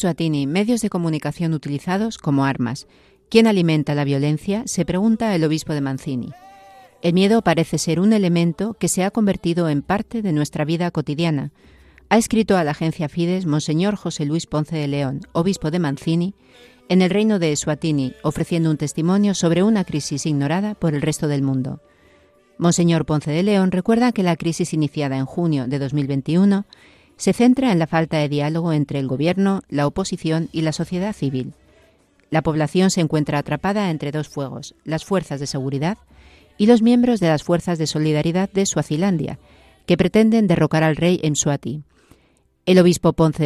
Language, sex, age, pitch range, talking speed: Spanish, female, 40-59, 150-190 Hz, 175 wpm